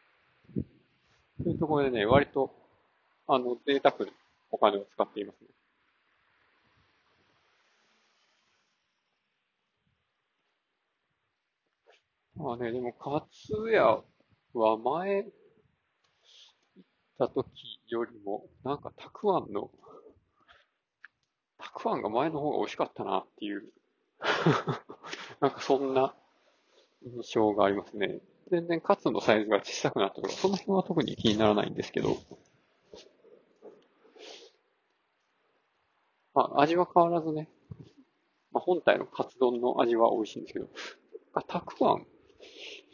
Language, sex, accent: Japanese, male, native